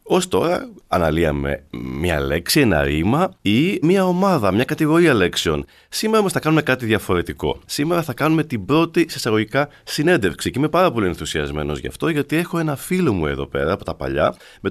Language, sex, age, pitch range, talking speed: Greek, male, 30-49, 95-155 Hz, 185 wpm